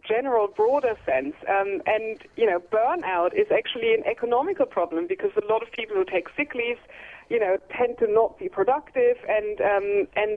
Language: English